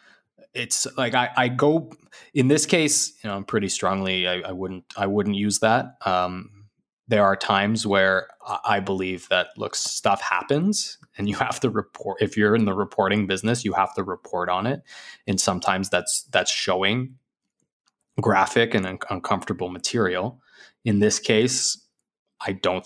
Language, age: English, 20-39